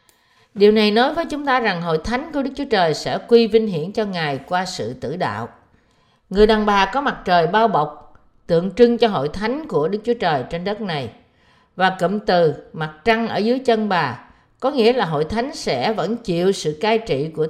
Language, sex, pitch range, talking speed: Vietnamese, female, 165-240 Hz, 220 wpm